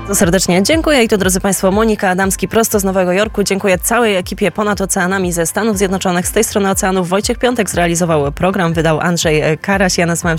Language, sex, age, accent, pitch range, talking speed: Polish, female, 20-39, native, 160-195 Hz, 190 wpm